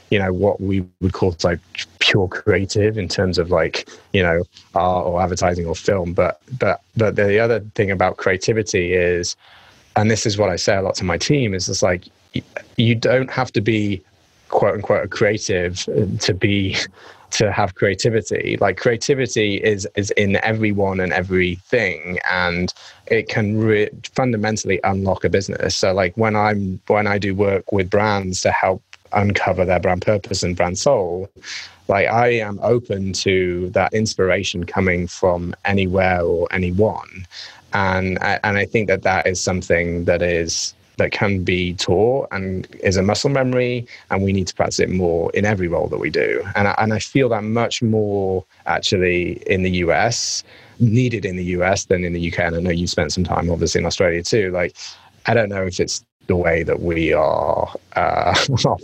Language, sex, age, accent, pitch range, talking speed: English, male, 20-39, British, 90-110 Hz, 185 wpm